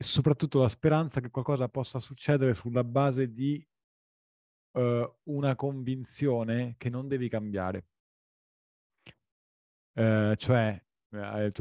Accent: native